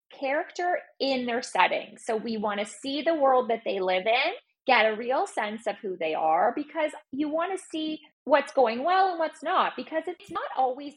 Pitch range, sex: 205-295 Hz, female